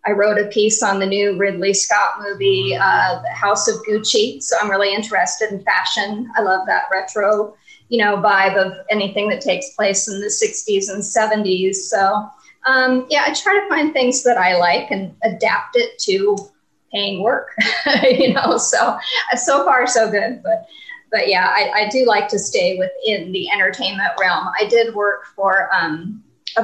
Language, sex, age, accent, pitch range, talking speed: English, female, 40-59, American, 200-260 Hz, 180 wpm